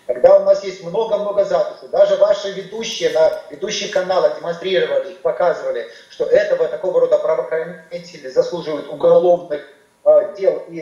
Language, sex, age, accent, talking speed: Russian, male, 30-49, native, 135 wpm